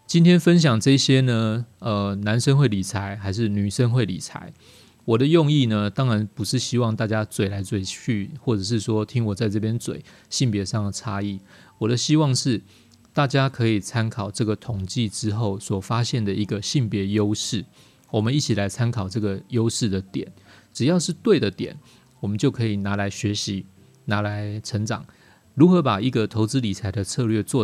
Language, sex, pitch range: Chinese, male, 105-125 Hz